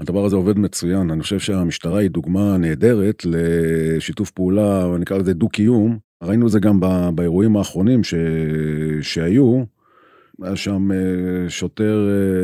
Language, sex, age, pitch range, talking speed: Hebrew, male, 40-59, 90-115 Hz, 130 wpm